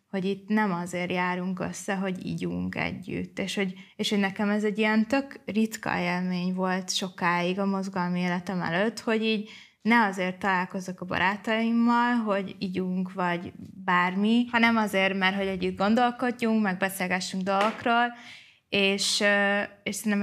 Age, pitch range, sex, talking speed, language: 20-39, 180-200 Hz, female, 140 wpm, Hungarian